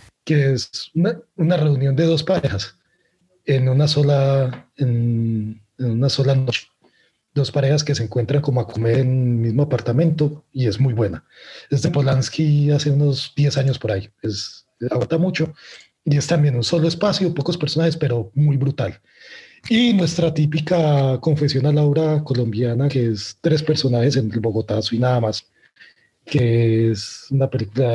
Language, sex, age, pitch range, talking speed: Spanish, male, 30-49, 120-155 Hz, 160 wpm